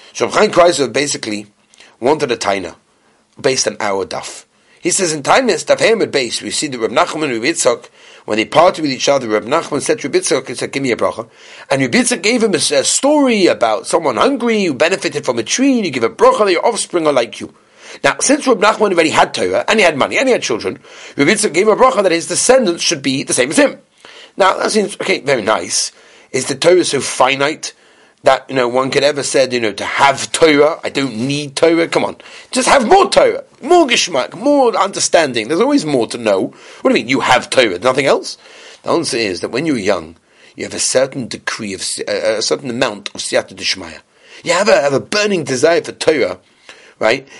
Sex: male